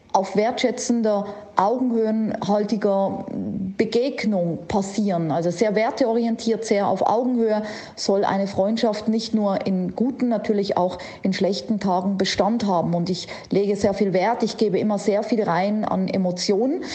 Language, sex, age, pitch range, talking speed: German, female, 40-59, 190-235 Hz, 140 wpm